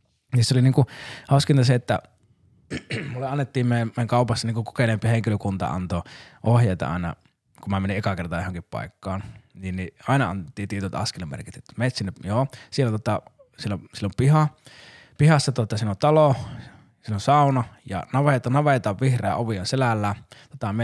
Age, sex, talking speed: 20-39, male, 160 wpm